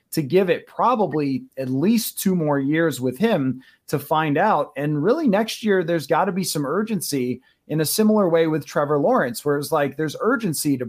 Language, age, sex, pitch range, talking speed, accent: English, 30-49, male, 150-195 Hz, 205 wpm, American